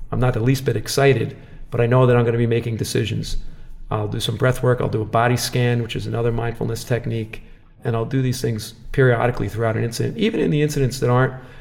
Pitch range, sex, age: 115-130 Hz, male, 40-59